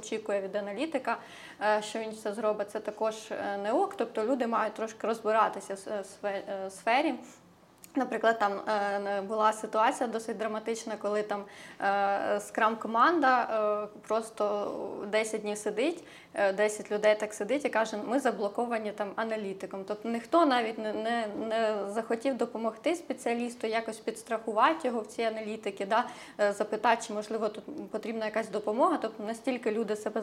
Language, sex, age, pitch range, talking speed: Ukrainian, female, 20-39, 205-230 Hz, 135 wpm